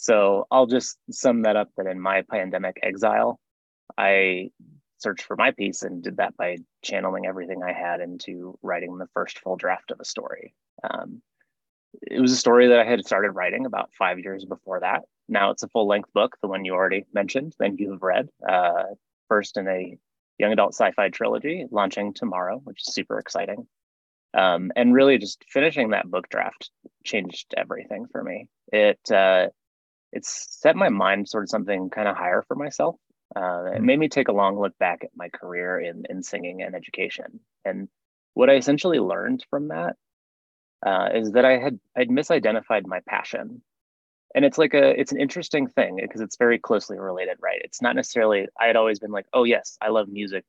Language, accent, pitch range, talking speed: English, American, 95-125 Hz, 195 wpm